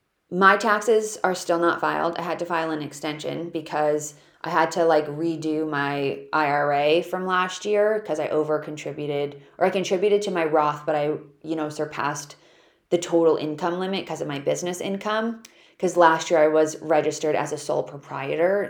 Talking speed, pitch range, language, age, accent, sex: 185 wpm, 150-175 Hz, English, 20-39, American, female